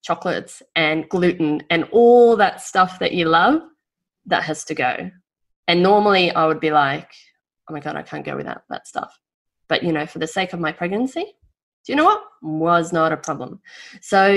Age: 20-39